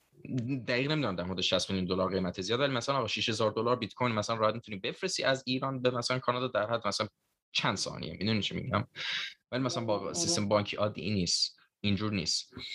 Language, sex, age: English, male, 20-39